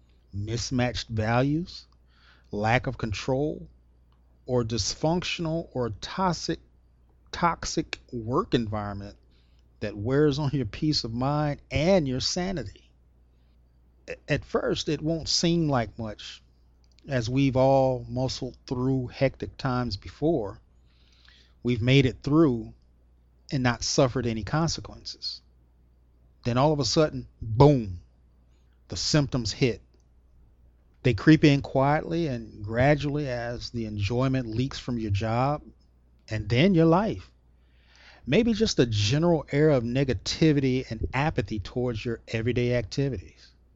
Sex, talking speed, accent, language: male, 115 wpm, American, English